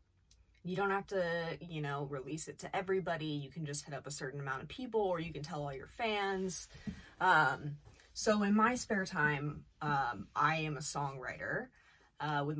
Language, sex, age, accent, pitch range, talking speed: English, female, 20-39, American, 145-185 Hz, 190 wpm